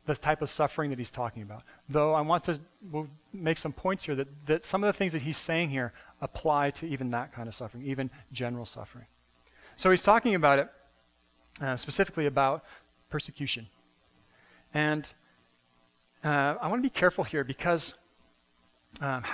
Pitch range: 115-150 Hz